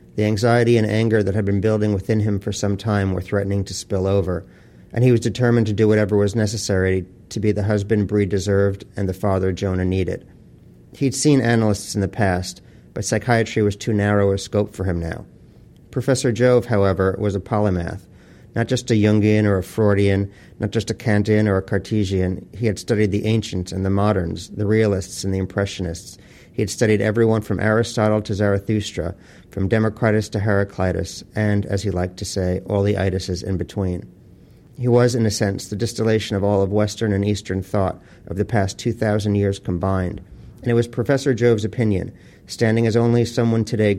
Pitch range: 95-110 Hz